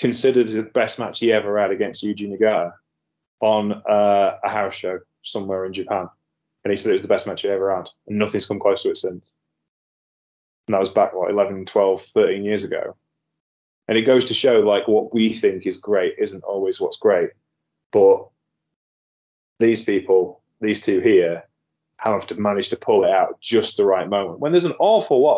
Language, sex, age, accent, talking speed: English, male, 20-39, British, 200 wpm